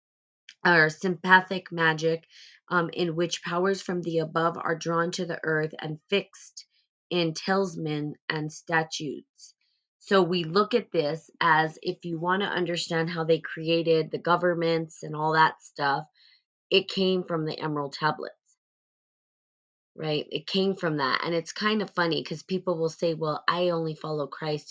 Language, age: English, 20-39